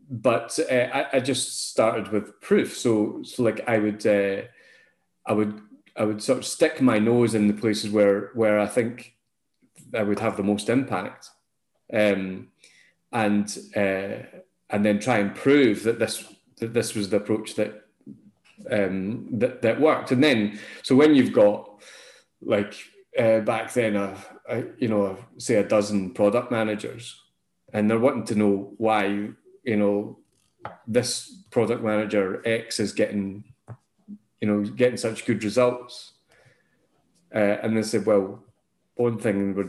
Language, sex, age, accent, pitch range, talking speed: English, male, 30-49, British, 105-125 Hz, 155 wpm